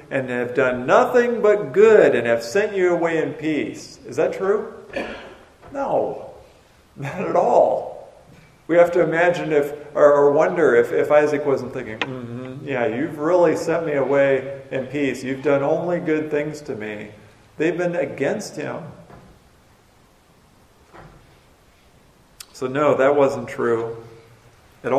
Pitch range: 125-155 Hz